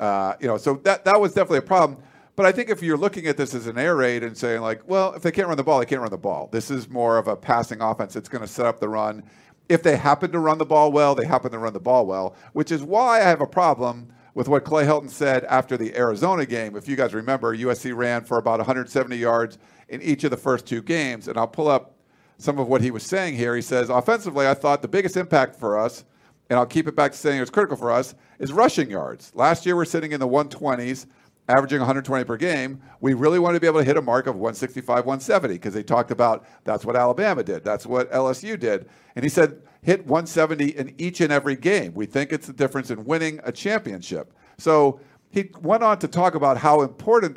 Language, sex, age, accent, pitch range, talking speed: English, male, 50-69, American, 125-155 Hz, 250 wpm